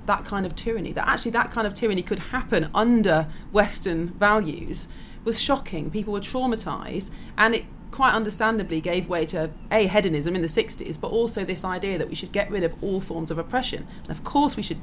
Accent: British